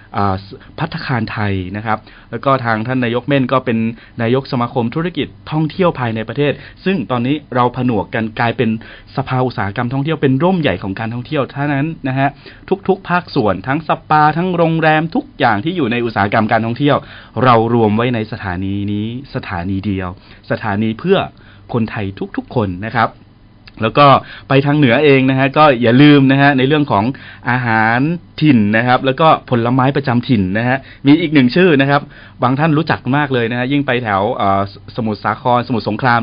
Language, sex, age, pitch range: Thai, male, 20-39, 110-150 Hz